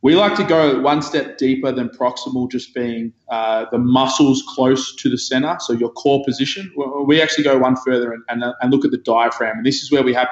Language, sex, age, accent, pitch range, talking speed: English, male, 20-39, Australian, 115-135 Hz, 235 wpm